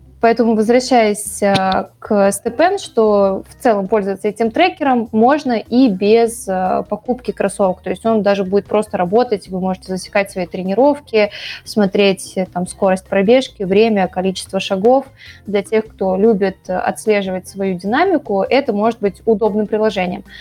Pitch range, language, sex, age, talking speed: 200-235 Hz, Russian, female, 20-39, 130 wpm